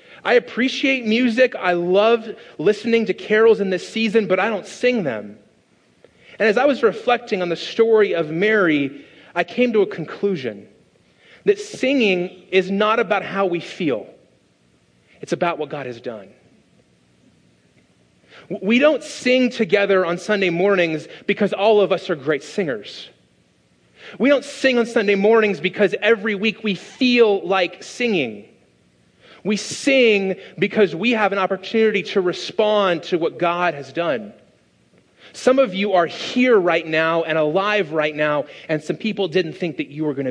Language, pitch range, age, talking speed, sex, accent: English, 155-220 Hz, 30-49, 160 wpm, male, American